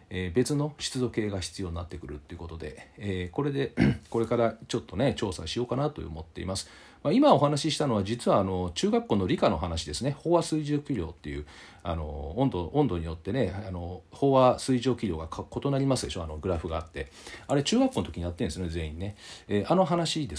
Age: 40-59